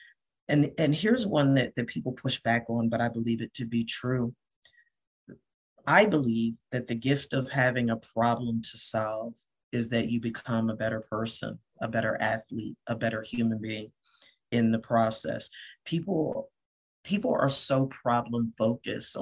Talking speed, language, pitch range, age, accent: 160 wpm, English, 115-125 Hz, 40-59, American